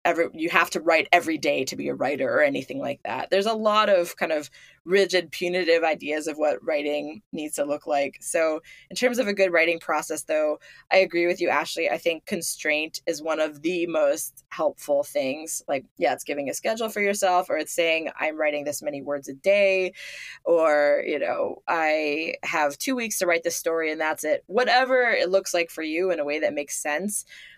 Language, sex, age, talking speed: English, female, 20-39, 215 wpm